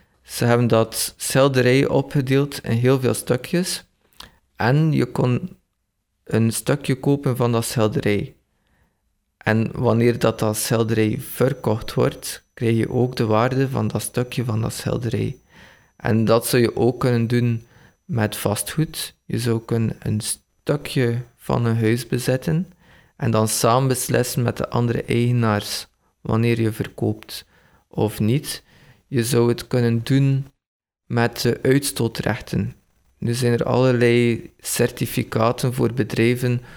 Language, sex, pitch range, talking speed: Dutch, male, 115-130 Hz, 135 wpm